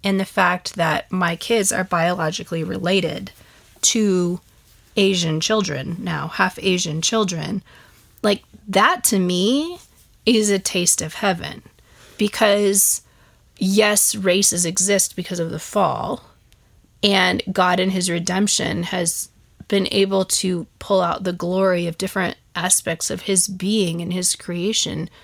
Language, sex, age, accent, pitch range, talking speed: English, female, 20-39, American, 175-200 Hz, 130 wpm